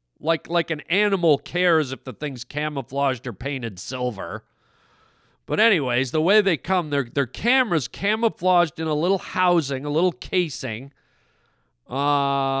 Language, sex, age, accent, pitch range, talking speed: English, male, 40-59, American, 130-175 Hz, 140 wpm